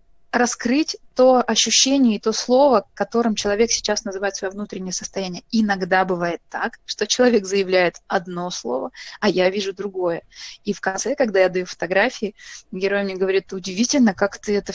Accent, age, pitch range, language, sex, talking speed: native, 20-39, 195-235 Hz, Russian, female, 160 wpm